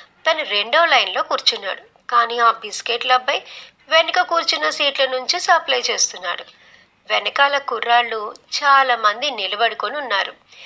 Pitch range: 215-285 Hz